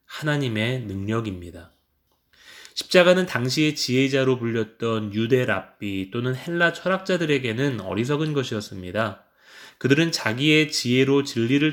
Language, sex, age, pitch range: Korean, male, 20-39, 110-150 Hz